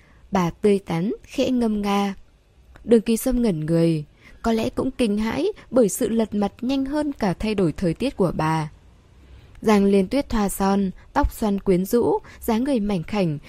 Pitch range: 175-230 Hz